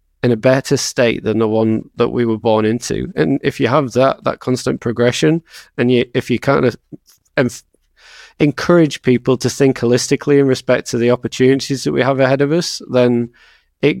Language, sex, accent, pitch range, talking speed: English, male, British, 115-135 Hz, 195 wpm